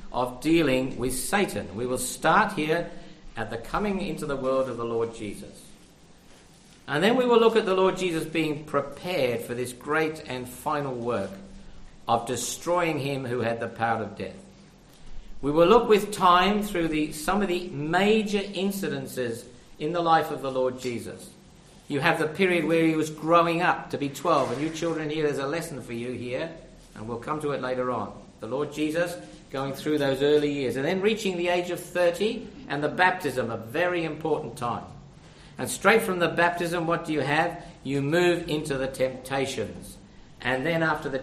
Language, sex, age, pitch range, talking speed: English, male, 50-69, 135-195 Hz, 190 wpm